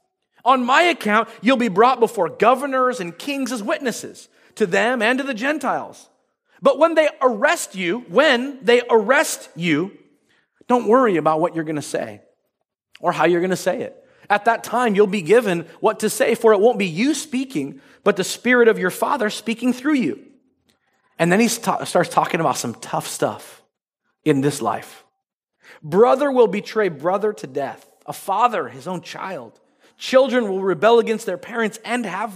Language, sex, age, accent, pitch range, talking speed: English, male, 40-59, American, 185-255 Hz, 180 wpm